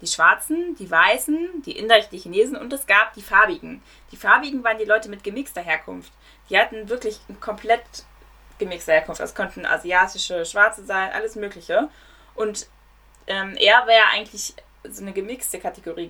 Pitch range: 185-235 Hz